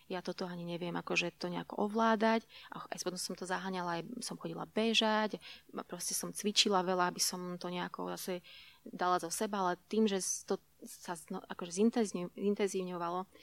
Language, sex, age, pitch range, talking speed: Slovak, female, 20-39, 170-195 Hz, 165 wpm